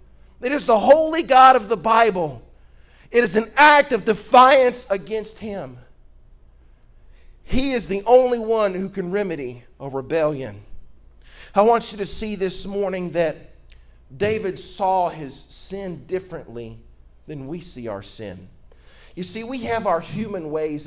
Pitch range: 145-225 Hz